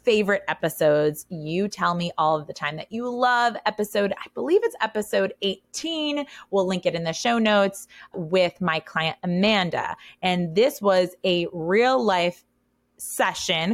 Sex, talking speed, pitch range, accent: female, 155 wpm, 165-205 Hz, American